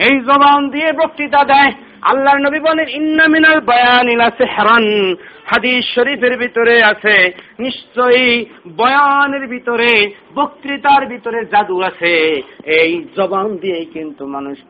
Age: 50-69